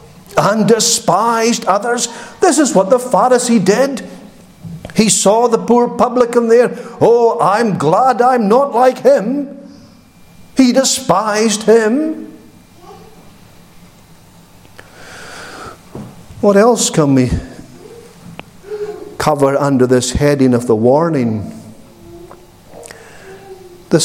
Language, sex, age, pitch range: English, male, 50-69, 165-250 Hz